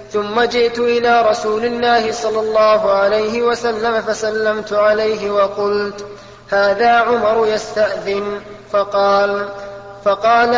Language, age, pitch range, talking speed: Arabic, 20-39, 205-230 Hz, 95 wpm